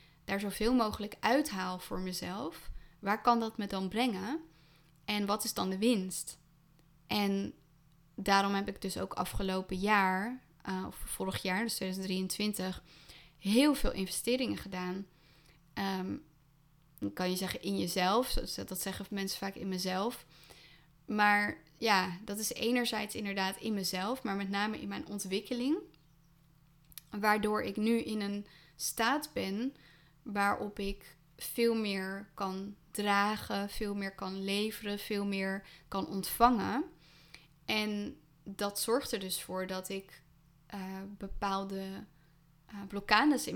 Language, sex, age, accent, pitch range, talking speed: Dutch, female, 20-39, Dutch, 185-215 Hz, 130 wpm